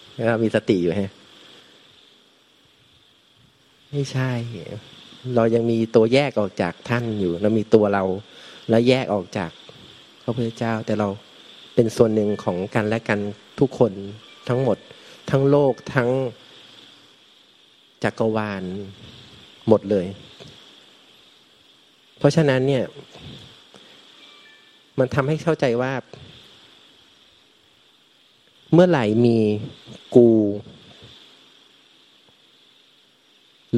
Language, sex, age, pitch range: Thai, male, 30-49, 110-130 Hz